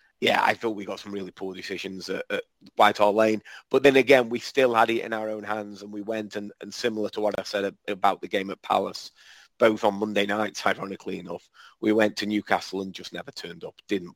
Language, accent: English, British